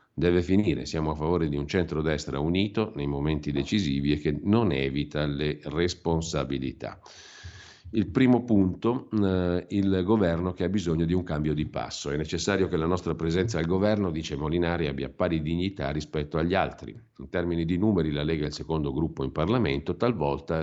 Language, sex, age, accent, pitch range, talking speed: Italian, male, 50-69, native, 75-95 Hz, 175 wpm